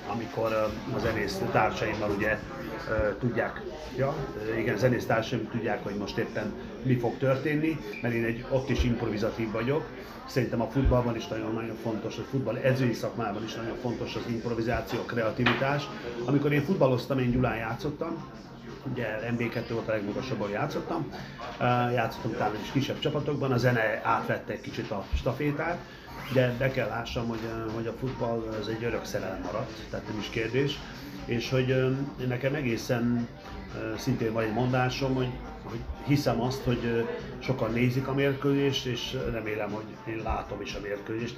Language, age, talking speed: Hungarian, 30-49, 155 wpm